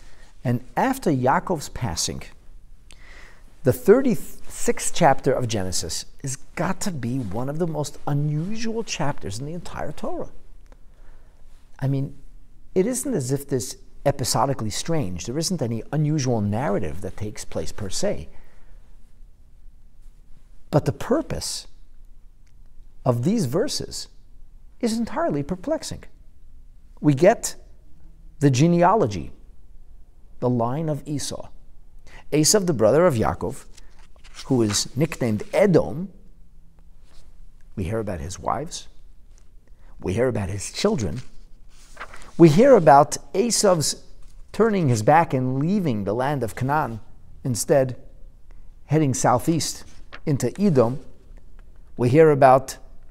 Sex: male